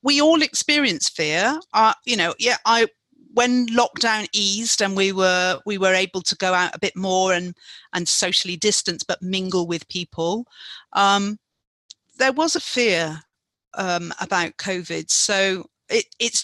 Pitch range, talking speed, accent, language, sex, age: 200-245 Hz, 155 wpm, British, English, female, 40-59